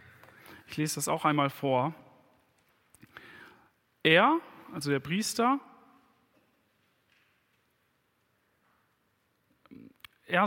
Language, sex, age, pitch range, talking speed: German, male, 40-59, 140-200 Hz, 65 wpm